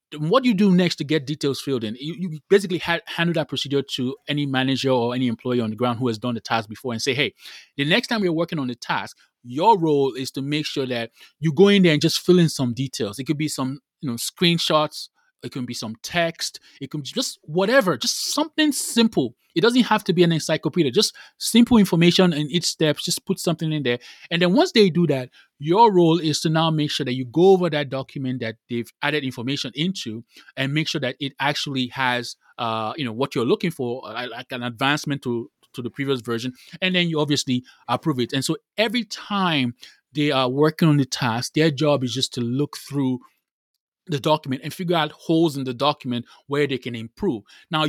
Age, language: 20-39, English